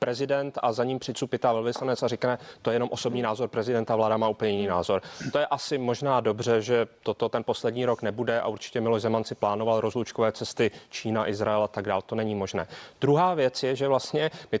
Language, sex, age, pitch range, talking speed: Czech, male, 30-49, 115-135 Hz, 215 wpm